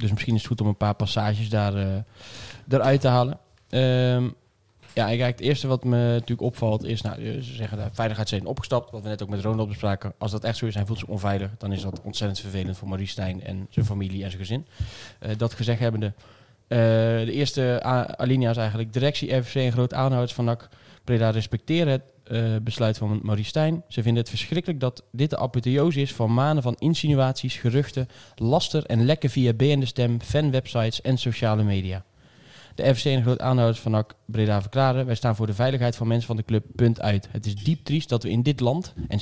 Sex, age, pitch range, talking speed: male, 20-39, 110-130 Hz, 215 wpm